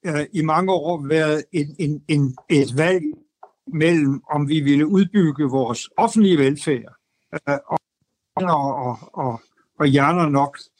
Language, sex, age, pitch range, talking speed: Danish, male, 60-79, 145-185 Hz, 130 wpm